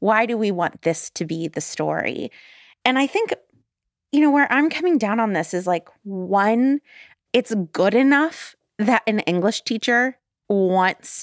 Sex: female